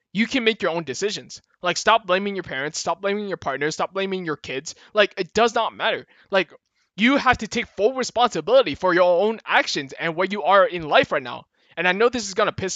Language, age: English, 20-39